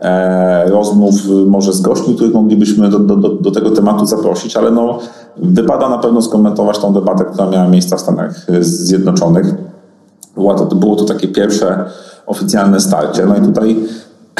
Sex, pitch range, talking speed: male, 95-110 Hz, 165 wpm